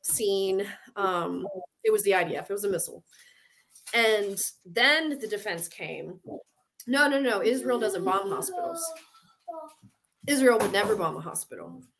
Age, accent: 20-39, American